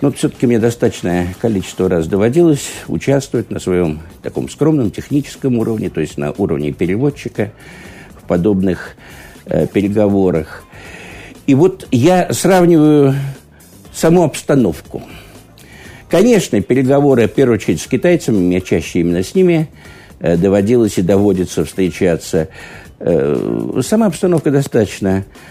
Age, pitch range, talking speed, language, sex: 60-79, 100-155 Hz, 115 wpm, Russian, male